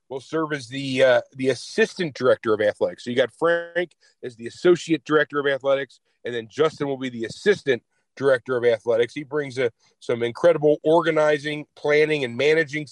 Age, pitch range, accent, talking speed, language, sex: 40-59, 125-150 Hz, American, 180 wpm, English, male